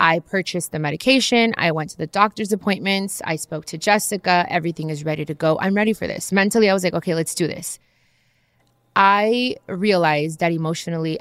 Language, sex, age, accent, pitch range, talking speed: English, female, 20-39, American, 165-205 Hz, 185 wpm